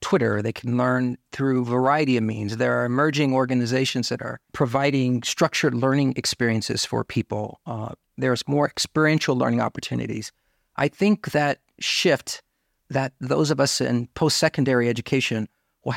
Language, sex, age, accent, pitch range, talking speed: English, male, 40-59, American, 120-145 Hz, 145 wpm